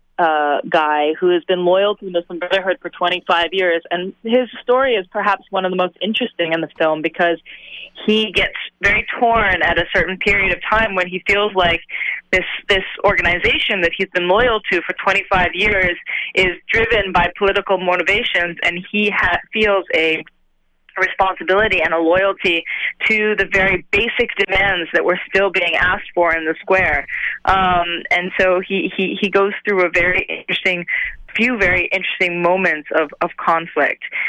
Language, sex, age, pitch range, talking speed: English, female, 20-39, 175-205 Hz, 170 wpm